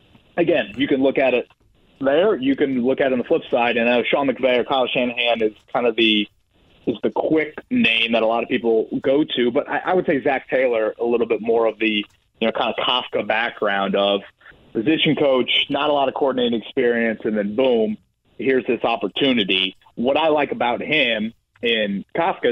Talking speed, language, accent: 210 wpm, English, American